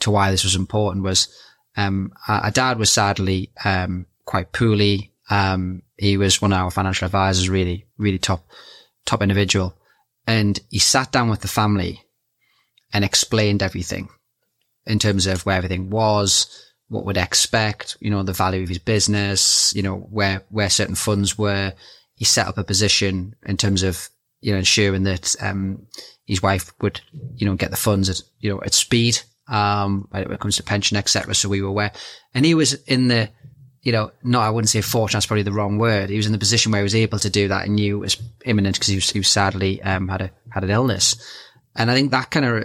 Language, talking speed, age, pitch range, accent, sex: English, 210 wpm, 20-39, 95-110 Hz, British, male